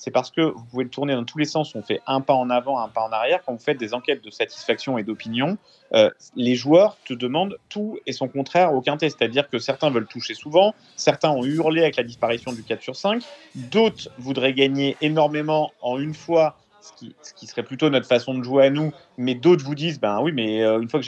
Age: 30-49